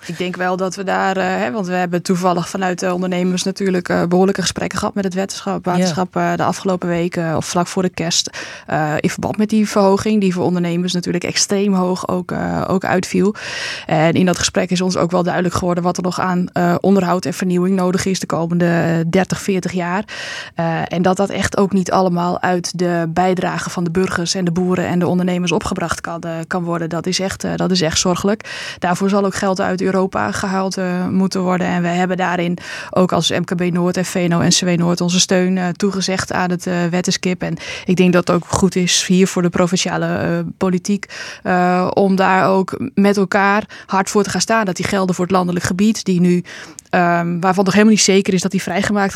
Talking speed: 205 wpm